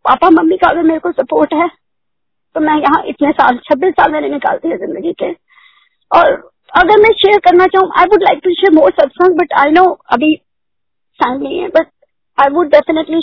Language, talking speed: Hindi, 125 wpm